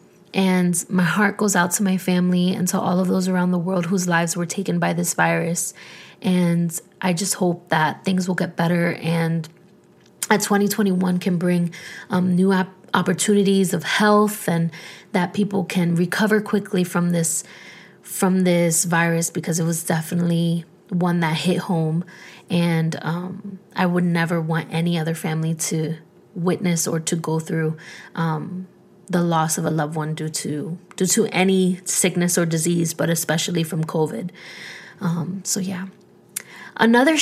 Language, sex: English, female